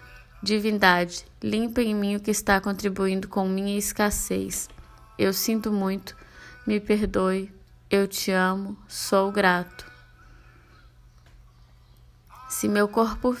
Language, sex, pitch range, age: Portuguese, female, 185-210 Hz, 20-39